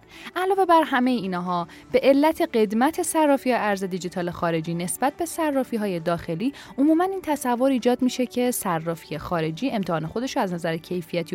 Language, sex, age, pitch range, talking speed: Persian, female, 10-29, 185-270 Hz, 150 wpm